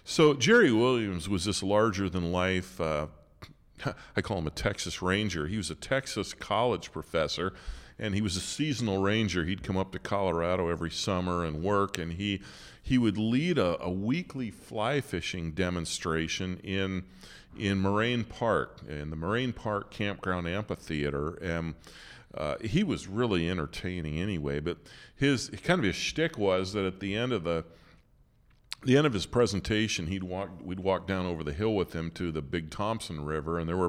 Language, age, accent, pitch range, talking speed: English, 40-59, American, 85-110 Hz, 175 wpm